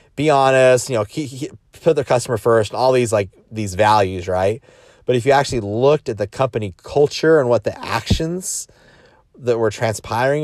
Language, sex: English, male